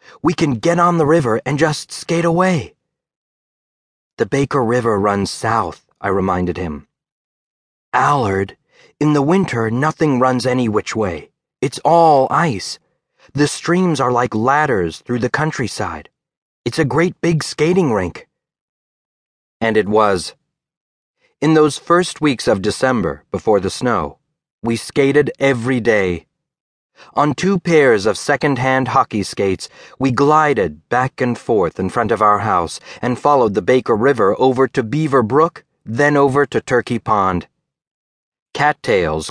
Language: English